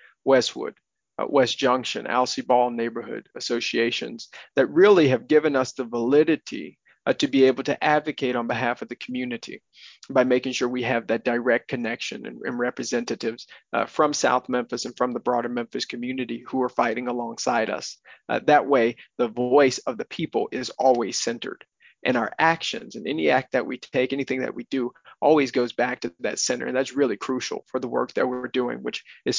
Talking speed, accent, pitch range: 190 wpm, American, 125-150 Hz